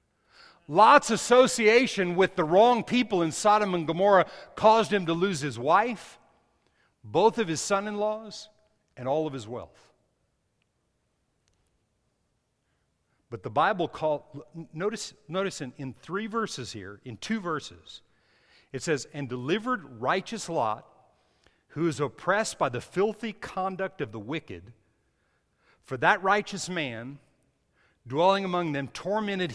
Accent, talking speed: American, 130 wpm